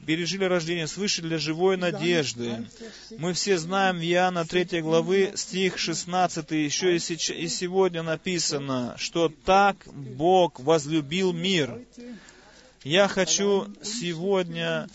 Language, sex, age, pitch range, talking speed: Russian, male, 30-49, 160-195 Hz, 110 wpm